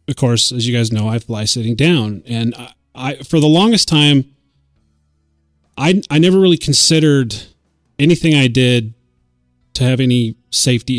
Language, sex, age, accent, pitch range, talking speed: English, male, 30-49, American, 115-145 Hz, 160 wpm